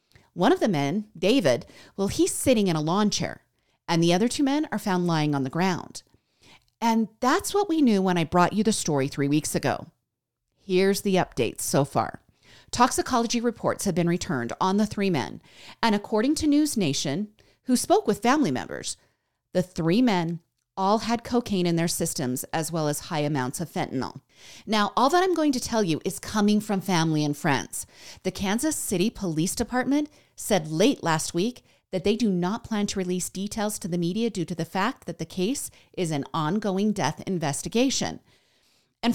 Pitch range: 170-235 Hz